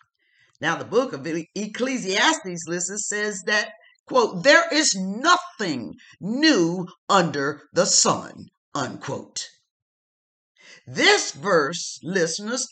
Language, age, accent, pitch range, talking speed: English, 50-69, American, 205-335 Hz, 95 wpm